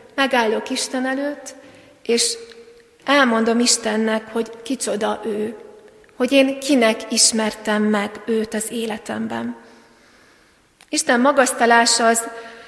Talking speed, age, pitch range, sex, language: 95 wpm, 30-49, 215-245 Hz, female, Hungarian